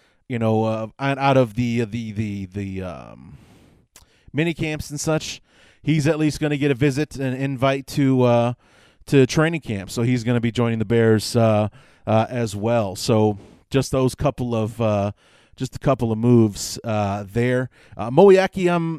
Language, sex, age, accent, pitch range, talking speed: English, male, 30-49, American, 115-150 Hz, 175 wpm